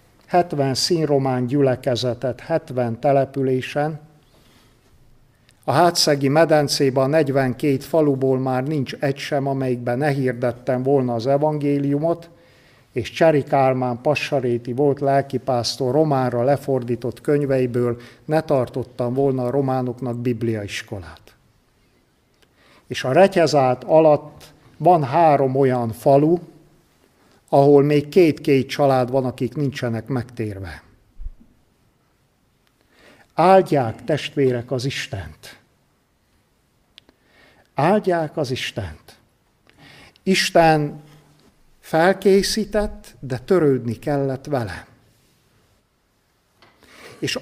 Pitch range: 125-155 Hz